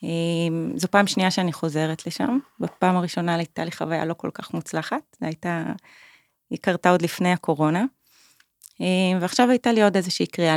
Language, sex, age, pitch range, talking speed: Hebrew, female, 30-49, 160-190 Hz, 160 wpm